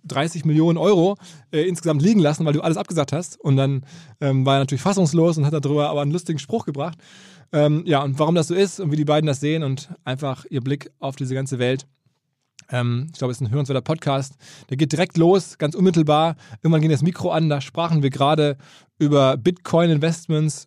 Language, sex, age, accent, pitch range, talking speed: German, male, 20-39, German, 135-165 Hz, 210 wpm